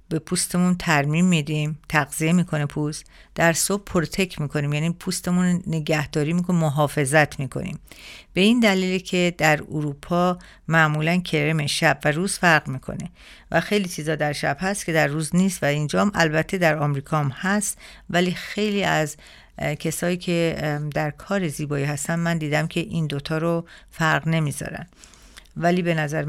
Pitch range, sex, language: 150-180 Hz, female, Persian